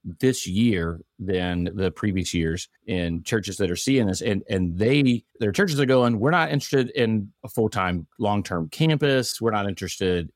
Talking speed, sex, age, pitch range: 175 wpm, male, 30-49, 90-110 Hz